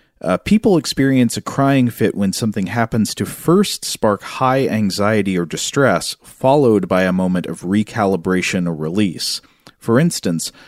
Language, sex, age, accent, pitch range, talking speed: English, male, 40-59, American, 95-110 Hz, 145 wpm